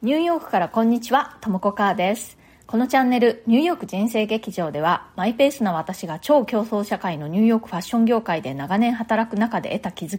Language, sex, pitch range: Japanese, female, 185-245 Hz